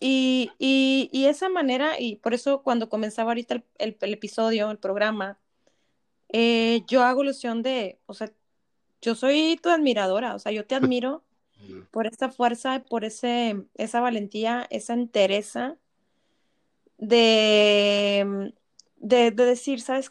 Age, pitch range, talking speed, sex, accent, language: 20-39, 220-275 Hz, 140 wpm, female, Mexican, Spanish